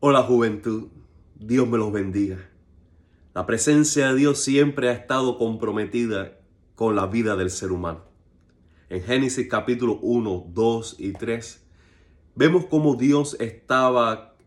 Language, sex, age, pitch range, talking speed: Spanish, male, 30-49, 95-125 Hz, 130 wpm